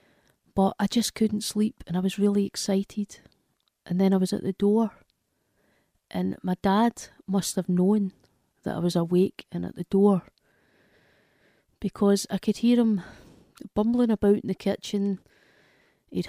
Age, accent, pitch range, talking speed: 30-49, British, 190-220 Hz, 155 wpm